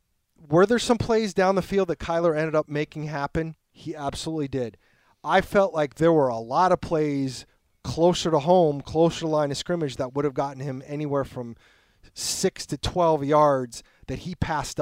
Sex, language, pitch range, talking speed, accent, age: male, English, 130-165 Hz, 190 wpm, American, 30-49